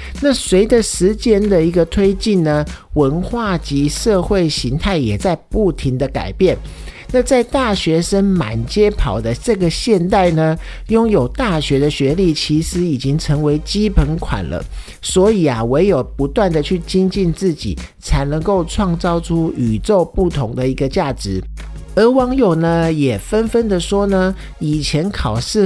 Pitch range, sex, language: 140-200 Hz, male, Chinese